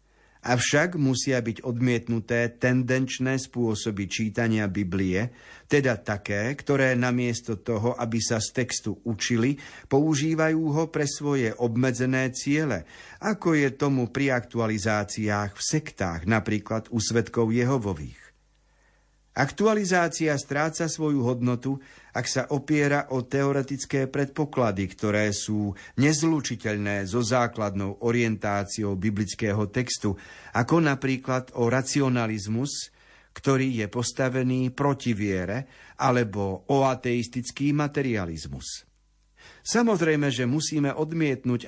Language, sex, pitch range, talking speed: Slovak, male, 110-135 Hz, 100 wpm